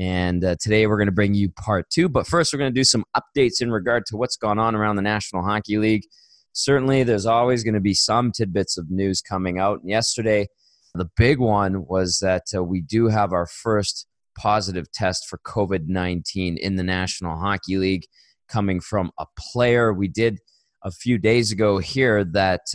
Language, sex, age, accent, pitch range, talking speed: English, male, 20-39, American, 90-110 Hz, 200 wpm